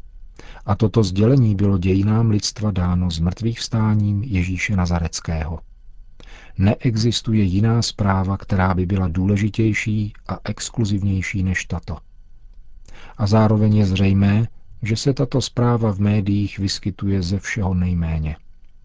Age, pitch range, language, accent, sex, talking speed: 40-59, 95-110 Hz, Czech, native, male, 120 wpm